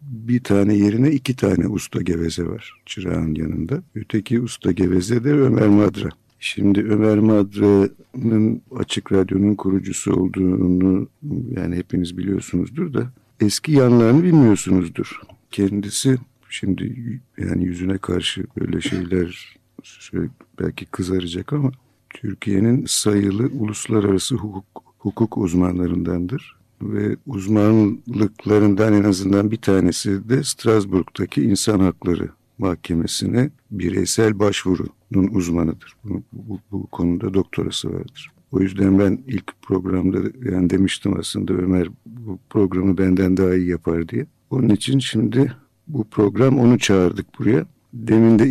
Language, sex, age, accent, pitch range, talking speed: Turkish, male, 50-69, native, 95-115 Hz, 115 wpm